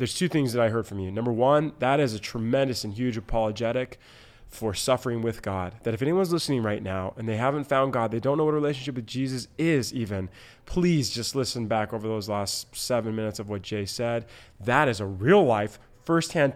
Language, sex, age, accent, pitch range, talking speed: English, male, 20-39, American, 105-130 Hz, 220 wpm